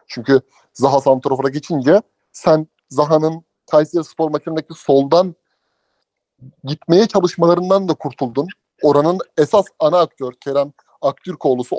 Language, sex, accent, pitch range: Turkish, male, native, 145-195 Hz